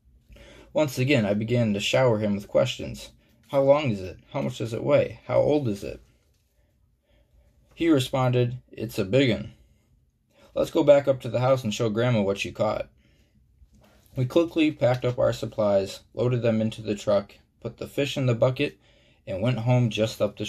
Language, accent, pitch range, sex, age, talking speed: English, American, 100-125 Hz, male, 20-39, 185 wpm